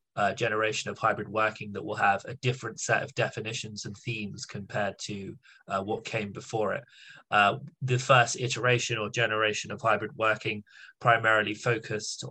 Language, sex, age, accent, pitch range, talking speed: English, male, 20-39, British, 105-120 Hz, 160 wpm